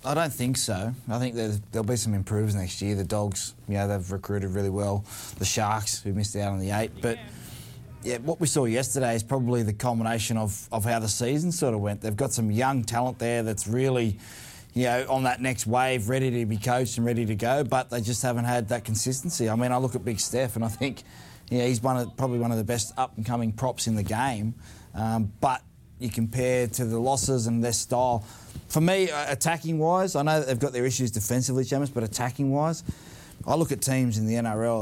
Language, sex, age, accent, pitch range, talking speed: English, male, 20-39, Australian, 110-130 Hz, 230 wpm